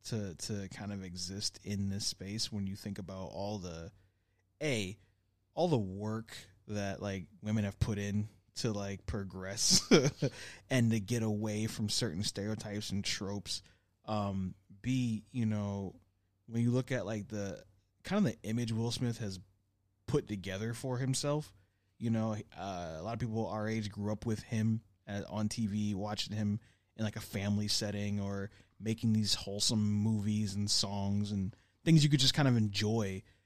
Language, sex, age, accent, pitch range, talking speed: English, male, 20-39, American, 100-115 Hz, 170 wpm